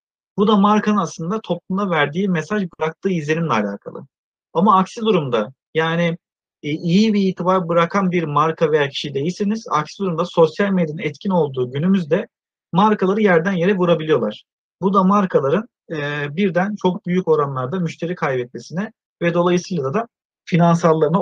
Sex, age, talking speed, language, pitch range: male, 40-59, 140 wpm, Turkish, 160-200 Hz